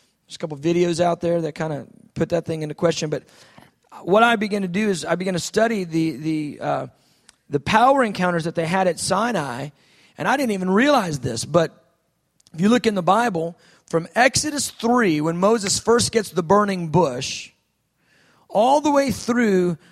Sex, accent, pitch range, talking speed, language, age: male, American, 170-220 Hz, 195 wpm, English, 40-59